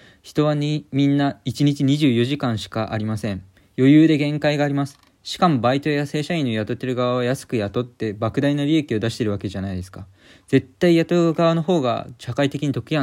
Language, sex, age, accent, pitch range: Japanese, male, 20-39, native, 105-150 Hz